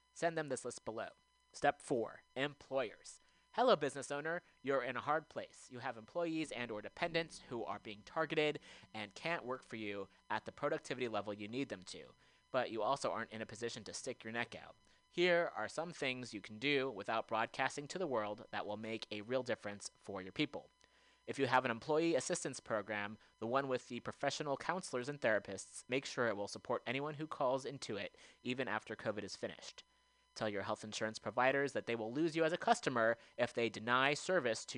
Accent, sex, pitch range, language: American, male, 110-145 Hz, English